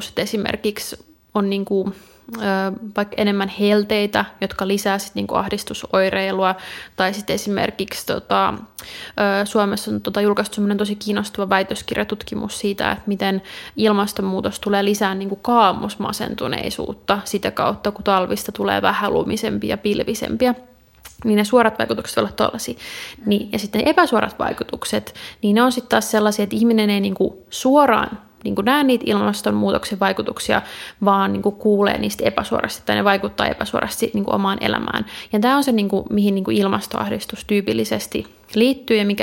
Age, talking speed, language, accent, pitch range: 20-39, 140 wpm, Finnish, native, 195-220 Hz